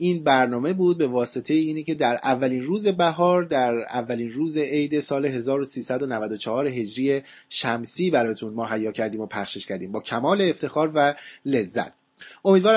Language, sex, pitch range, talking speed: Persian, male, 130-175 Hz, 150 wpm